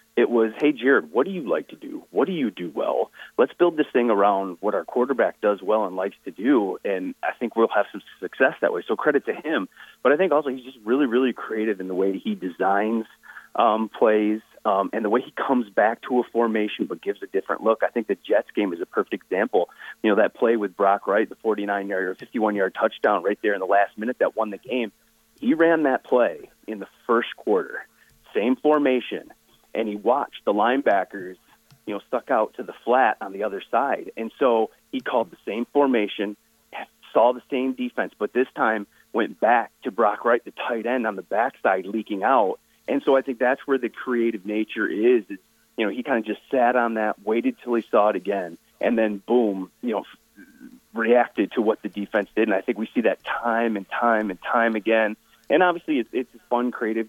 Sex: male